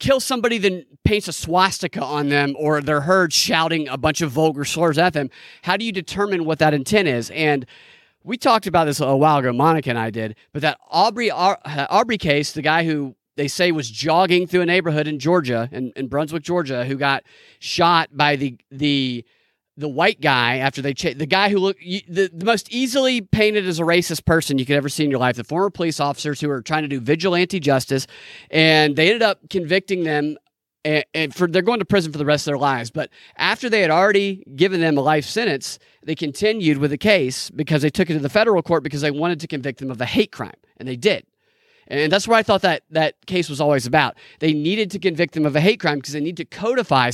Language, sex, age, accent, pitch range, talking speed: English, male, 30-49, American, 150-195 Hz, 230 wpm